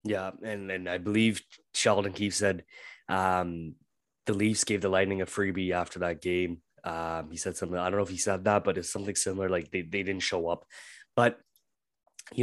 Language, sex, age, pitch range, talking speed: English, male, 20-39, 100-130 Hz, 205 wpm